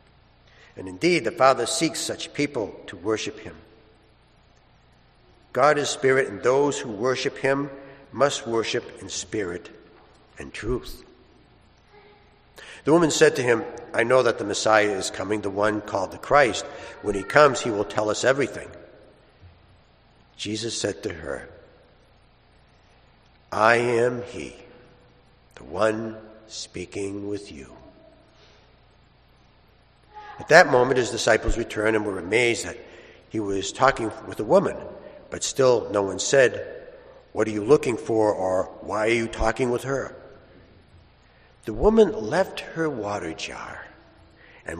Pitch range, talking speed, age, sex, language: 100-135 Hz, 135 wpm, 60-79, male, English